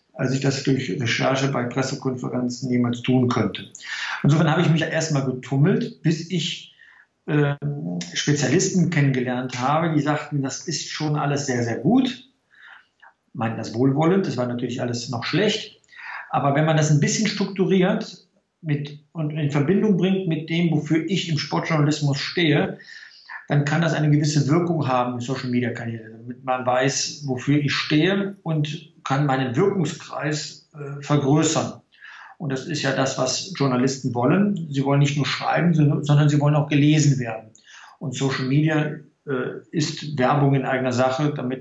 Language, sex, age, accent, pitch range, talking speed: German, male, 50-69, German, 130-160 Hz, 160 wpm